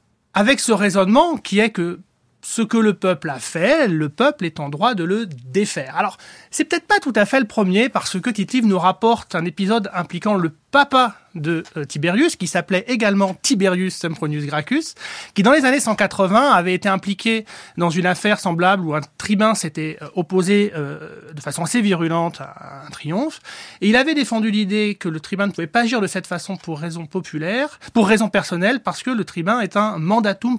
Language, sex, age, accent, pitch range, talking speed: French, male, 30-49, French, 170-225 Hz, 200 wpm